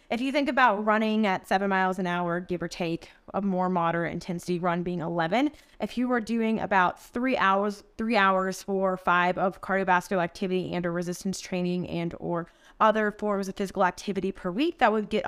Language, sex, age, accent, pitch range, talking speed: English, female, 20-39, American, 180-240 Hz, 195 wpm